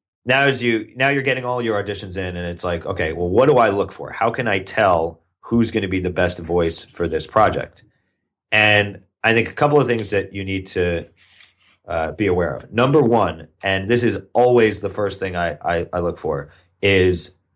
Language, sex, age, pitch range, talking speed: English, male, 30-49, 90-115 Hz, 220 wpm